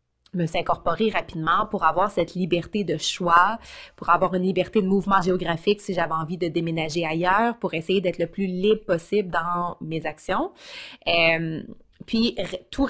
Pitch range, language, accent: 180-230 Hz, French, Canadian